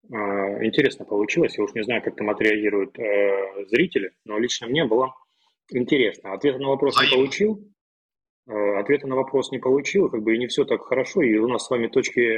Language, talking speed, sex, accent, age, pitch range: Russian, 195 wpm, male, native, 20-39, 105-175 Hz